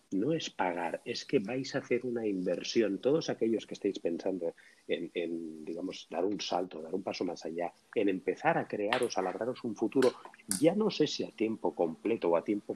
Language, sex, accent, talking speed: Spanish, male, Spanish, 205 wpm